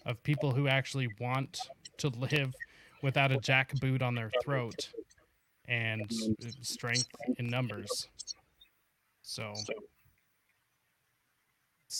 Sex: male